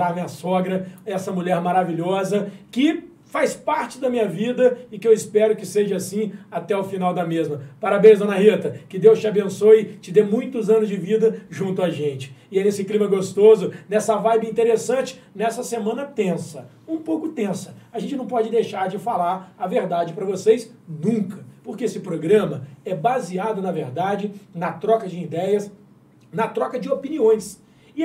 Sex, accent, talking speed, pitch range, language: male, Brazilian, 175 wpm, 185-245 Hz, Portuguese